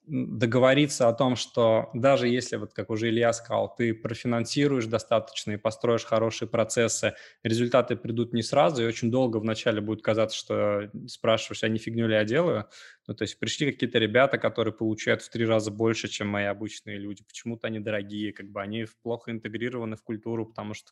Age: 20-39